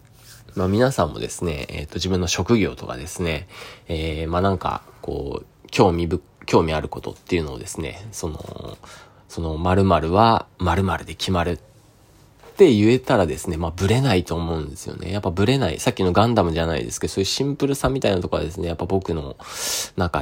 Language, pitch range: Japanese, 85-105 Hz